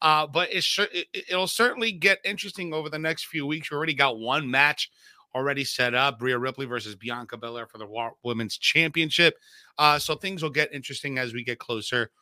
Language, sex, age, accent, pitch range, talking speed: English, male, 30-49, American, 140-195 Hz, 185 wpm